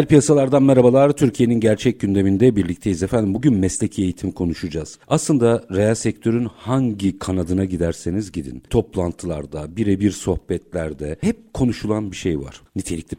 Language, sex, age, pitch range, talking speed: Turkish, male, 50-69, 85-125 Hz, 125 wpm